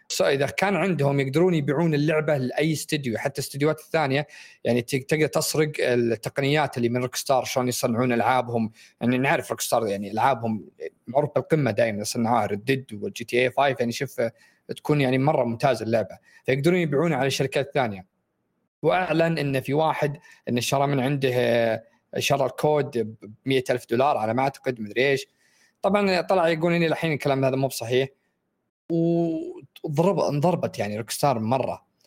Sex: male